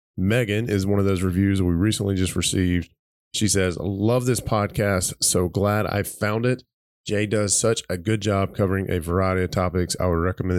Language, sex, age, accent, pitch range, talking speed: English, male, 20-39, American, 90-110 Hz, 200 wpm